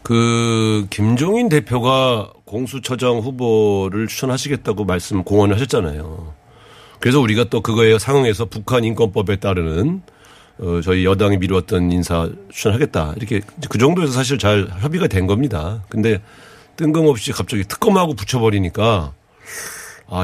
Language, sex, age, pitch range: Korean, male, 40-59, 100-140 Hz